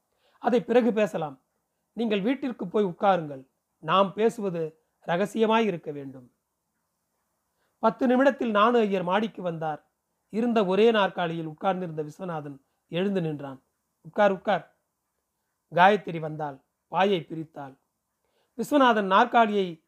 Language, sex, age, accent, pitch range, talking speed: Tamil, male, 40-59, native, 170-225 Hz, 95 wpm